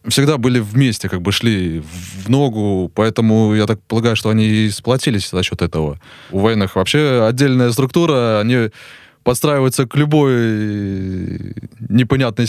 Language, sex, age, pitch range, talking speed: Russian, male, 20-39, 105-130 Hz, 140 wpm